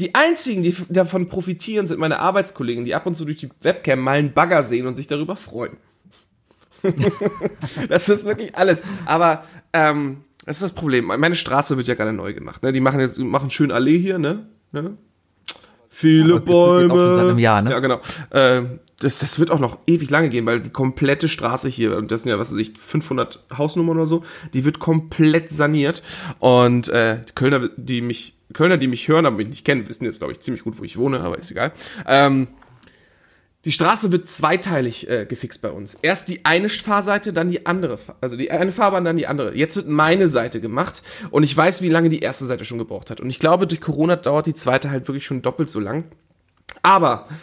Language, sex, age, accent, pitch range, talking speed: German, male, 30-49, German, 130-175 Hz, 205 wpm